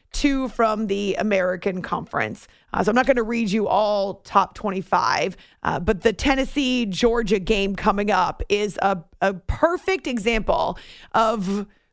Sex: female